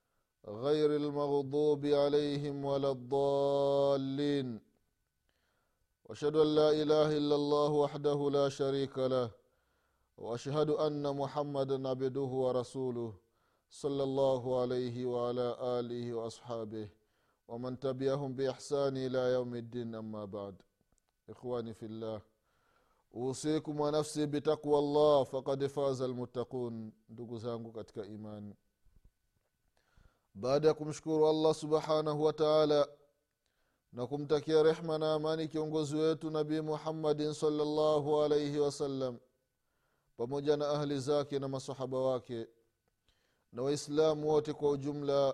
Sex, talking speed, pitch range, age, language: male, 95 wpm, 120-150 Hz, 30-49, Swahili